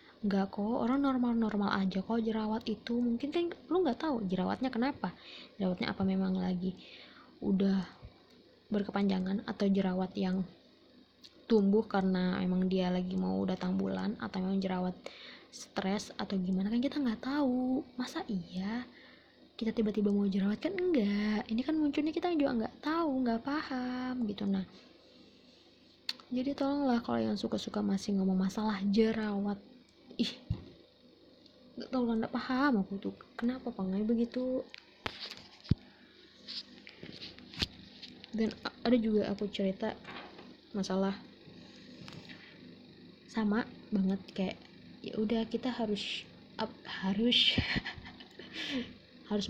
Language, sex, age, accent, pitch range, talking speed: Indonesian, female, 20-39, native, 195-250 Hz, 120 wpm